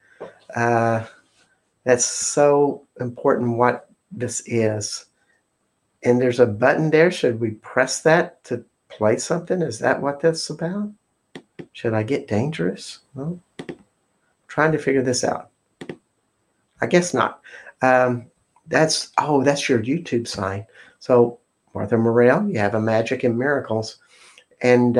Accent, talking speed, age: American, 130 wpm, 60-79